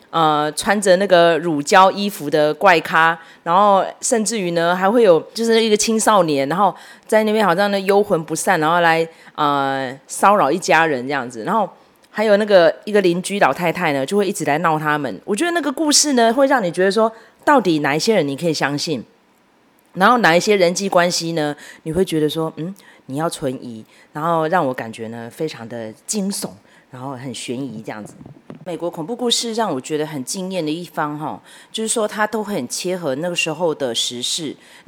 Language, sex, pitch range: Chinese, female, 155-215 Hz